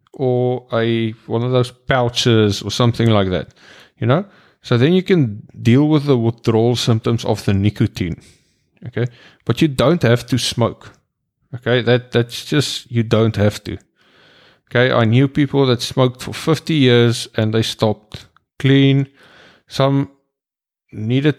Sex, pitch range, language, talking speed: male, 110-125 Hz, English, 150 wpm